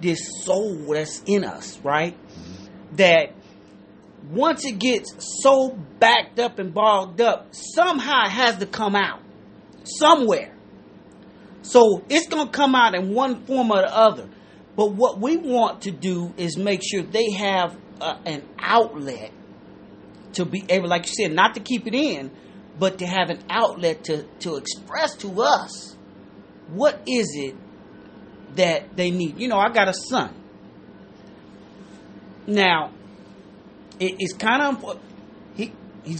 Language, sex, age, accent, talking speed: English, male, 30-49, American, 145 wpm